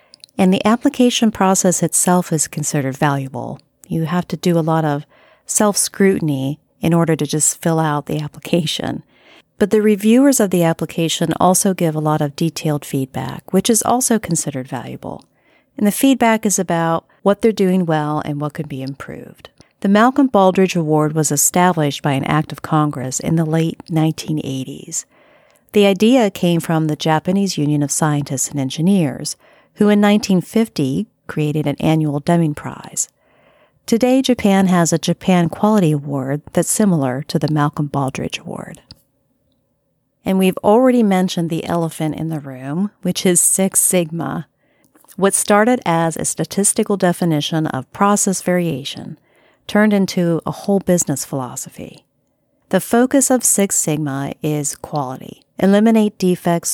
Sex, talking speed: female, 150 wpm